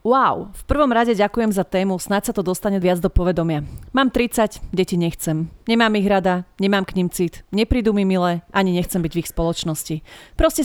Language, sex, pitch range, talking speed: Slovak, female, 175-215 Hz, 195 wpm